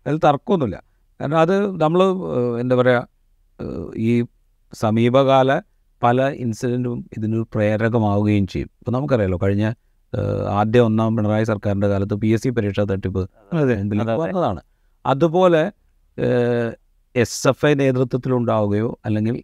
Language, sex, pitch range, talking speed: Malayalam, male, 105-130 Hz, 100 wpm